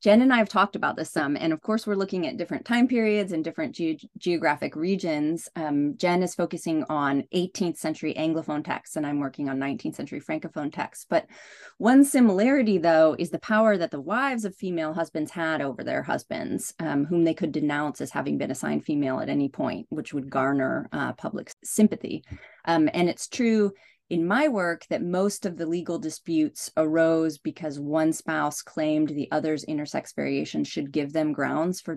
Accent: American